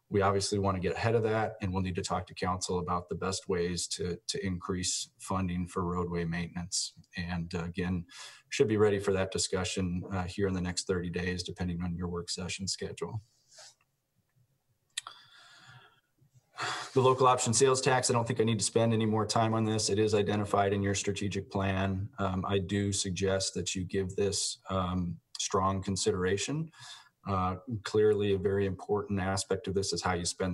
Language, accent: English, American